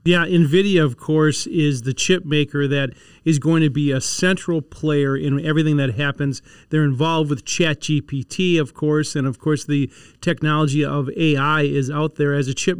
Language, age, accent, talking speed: English, 40-59, American, 185 wpm